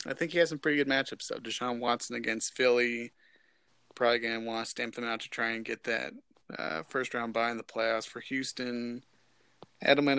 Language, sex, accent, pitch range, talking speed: English, male, American, 115-125 Hz, 210 wpm